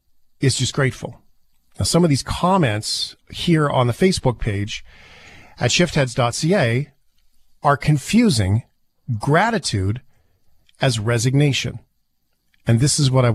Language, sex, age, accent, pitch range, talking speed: English, male, 40-59, American, 110-165 Hz, 110 wpm